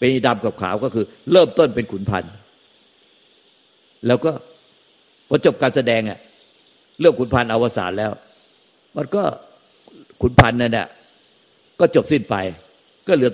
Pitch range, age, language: 100-125 Hz, 60-79, Thai